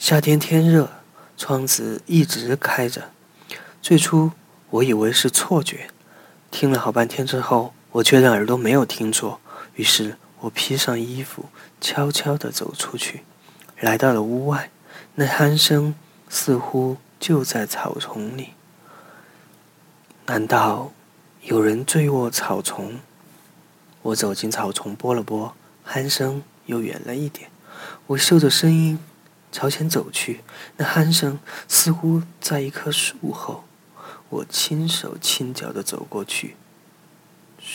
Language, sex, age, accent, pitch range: Chinese, male, 20-39, native, 125-165 Hz